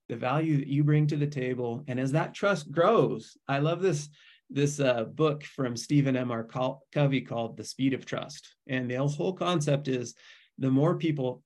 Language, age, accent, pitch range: English, 30-49, American, 130-160 Hz